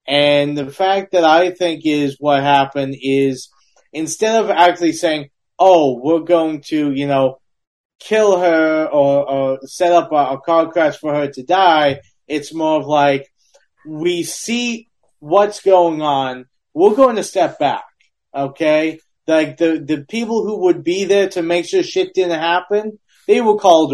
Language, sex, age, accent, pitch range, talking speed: English, male, 30-49, American, 150-190 Hz, 165 wpm